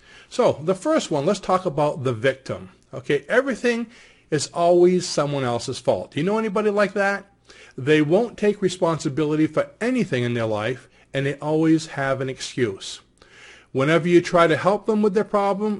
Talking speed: 175 wpm